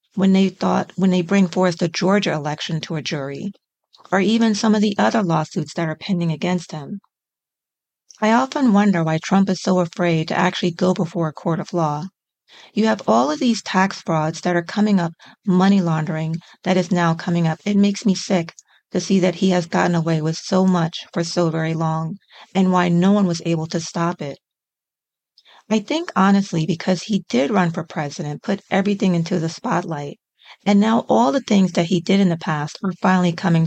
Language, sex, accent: English, female, American